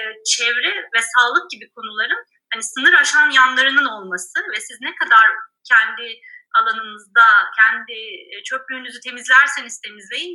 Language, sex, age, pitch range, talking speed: Turkish, female, 30-49, 220-360 Hz, 115 wpm